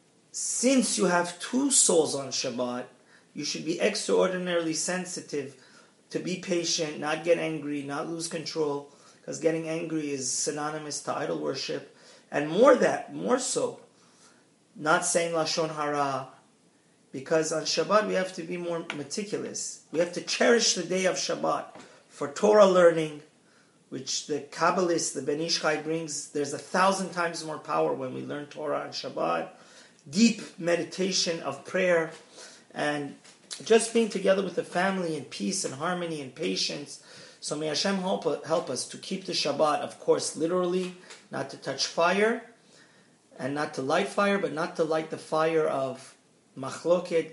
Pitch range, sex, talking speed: 150-185 Hz, male, 155 wpm